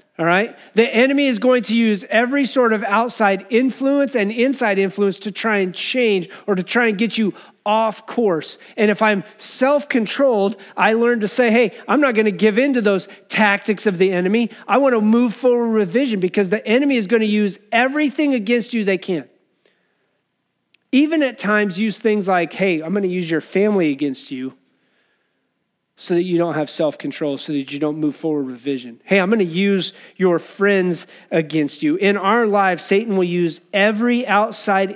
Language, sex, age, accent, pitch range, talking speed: English, male, 30-49, American, 165-220 Hz, 195 wpm